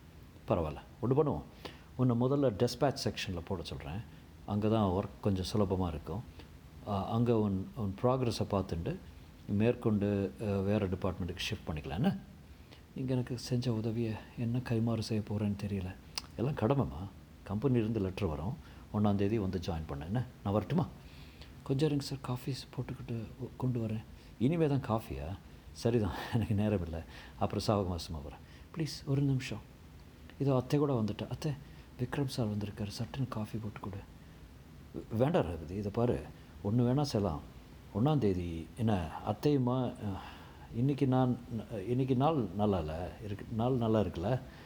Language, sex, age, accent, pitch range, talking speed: Tamil, male, 50-69, native, 90-125 Hz, 130 wpm